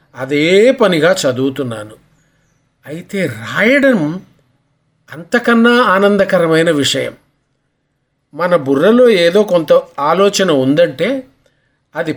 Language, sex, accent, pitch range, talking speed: English, male, Indian, 145-210 Hz, 75 wpm